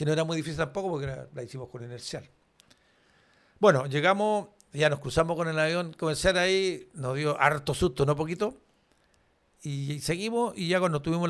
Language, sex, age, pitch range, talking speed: Spanish, male, 60-79, 140-185 Hz, 170 wpm